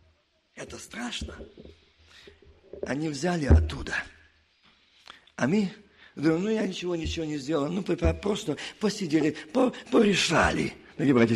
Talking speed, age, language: 95 wpm, 50-69, Russian